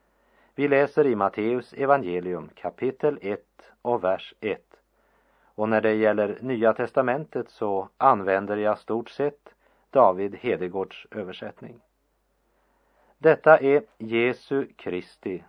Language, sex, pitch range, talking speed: English, male, 100-130 Hz, 110 wpm